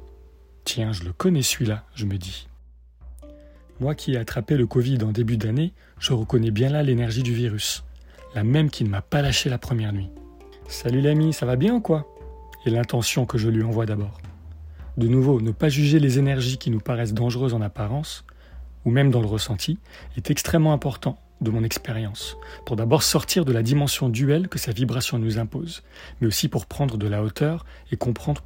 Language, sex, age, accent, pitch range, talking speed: French, male, 30-49, French, 105-145 Hz, 195 wpm